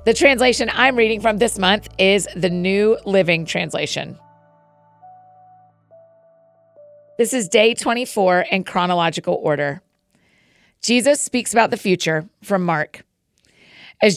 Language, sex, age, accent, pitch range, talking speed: English, female, 40-59, American, 170-215 Hz, 115 wpm